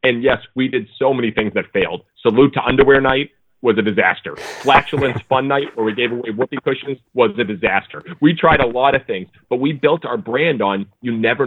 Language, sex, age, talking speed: English, male, 40-59, 220 wpm